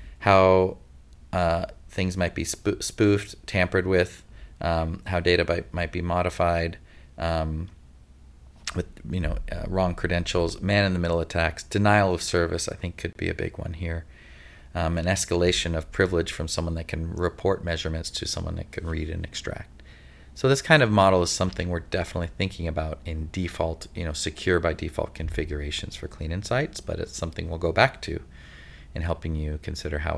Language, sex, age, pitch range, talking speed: English, male, 30-49, 75-90 Hz, 175 wpm